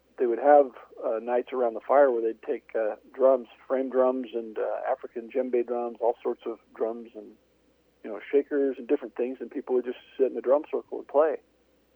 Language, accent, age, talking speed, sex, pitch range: English, American, 40-59, 210 wpm, male, 120-150 Hz